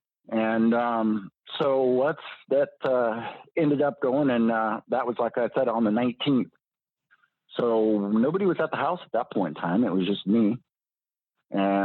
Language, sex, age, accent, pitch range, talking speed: English, male, 50-69, American, 100-125 Hz, 175 wpm